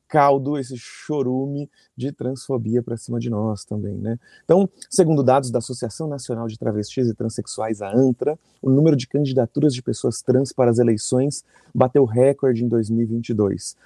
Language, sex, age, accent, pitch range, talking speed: Portuguese, male, 30-49, Brazilian, 115-135 Hz, 160 wpm